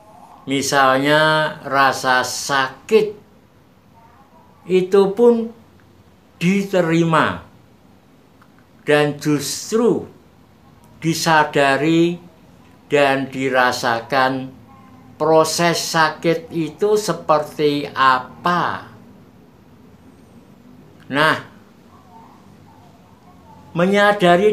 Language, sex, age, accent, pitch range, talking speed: Indonesian, male, 60-79, native, 135-175 Hz, 45 wpm